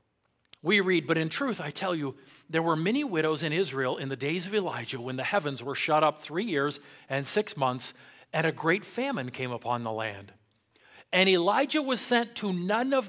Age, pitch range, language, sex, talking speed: 40-59, 145-235 Hz, English, male, 205 wpm